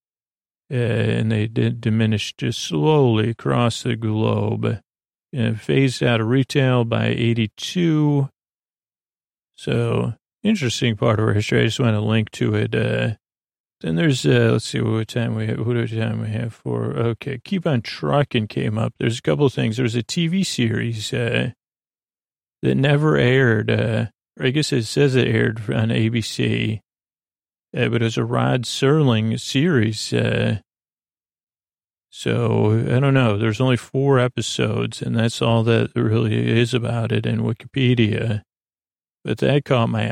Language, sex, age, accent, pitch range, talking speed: English, male, 40-59, American, 110-125 Hz, 155 wpm